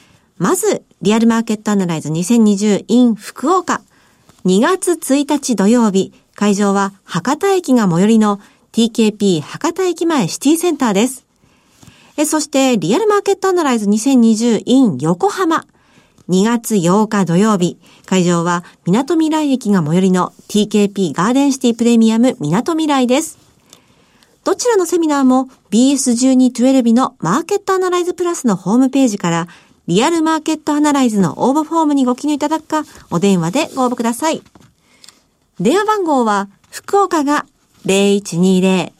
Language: Japanese